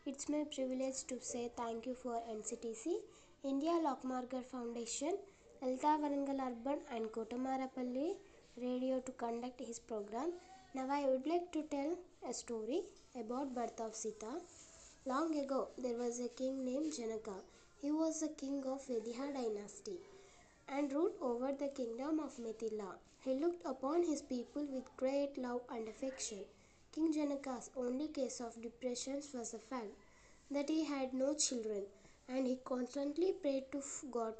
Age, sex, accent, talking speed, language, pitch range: 20-39, female, native, 150 wpm, Telugu, 240-290 Hz